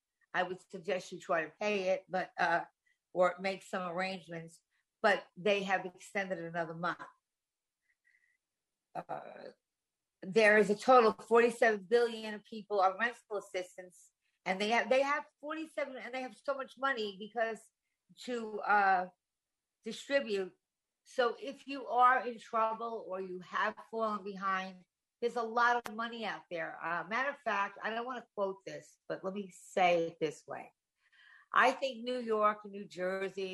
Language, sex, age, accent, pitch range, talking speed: English, female, 50-69, American, 185-235 Hz, 160 wpm